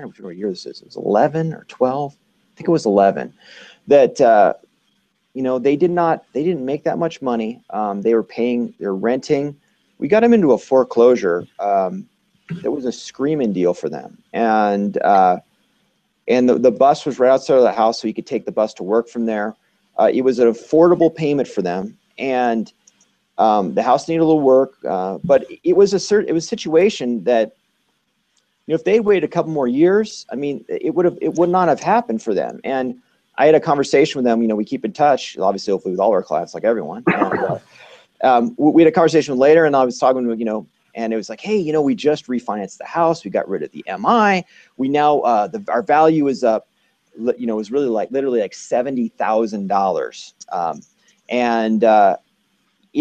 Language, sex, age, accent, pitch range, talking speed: English, male, 40-59, American, 115-170 Hz, 220 wpm